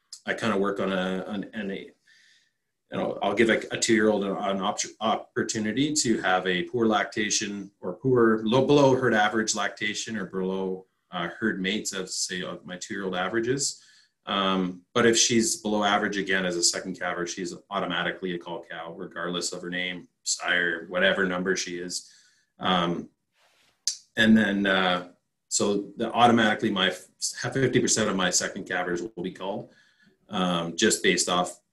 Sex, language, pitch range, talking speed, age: male, English, 90-110 Hz, 165 wpm, 30-49